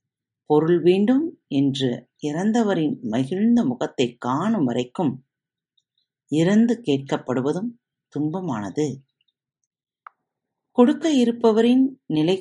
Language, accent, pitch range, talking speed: Tamil, native, 135-210 Hz, 70 wpm